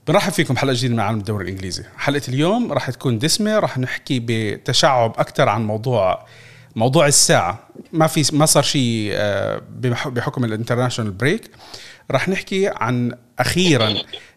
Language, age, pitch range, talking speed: Arabic, 40-59, 125-170 Hz, 140 wpm